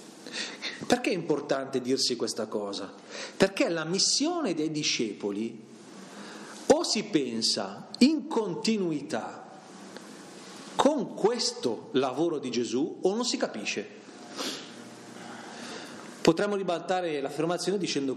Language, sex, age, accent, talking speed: Italian, male, 40-59, native, 95 wpm